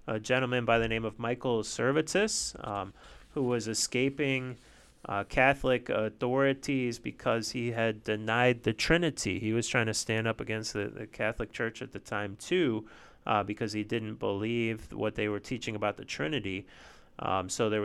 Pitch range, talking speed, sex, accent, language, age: 110-125 Hz, 170 wpm, male, American, English, 30-49